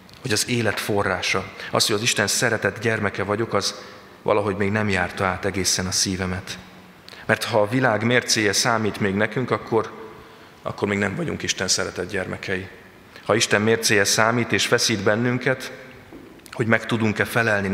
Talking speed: 160 wpm